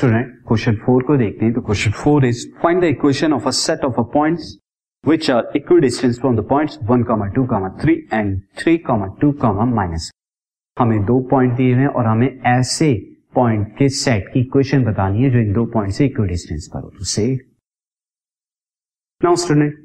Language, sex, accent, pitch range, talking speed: Hindi, male, native, 110-140 Hz, 130 wpm